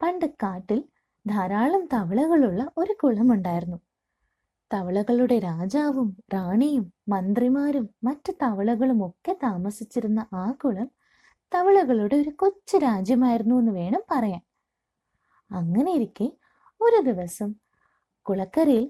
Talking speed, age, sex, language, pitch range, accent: 85 wpm, 20-39, female, Malayalam, 210-295 Hz, native